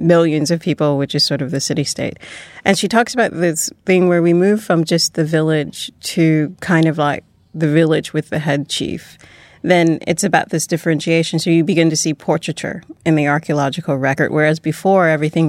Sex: female